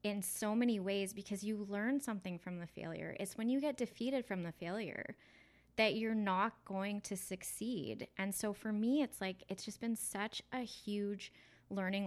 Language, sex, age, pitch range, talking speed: English, female, 20-39, 180-220 Hz, 190 wpm